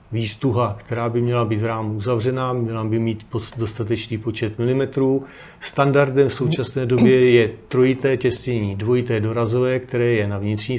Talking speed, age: 150 wpm, 40-59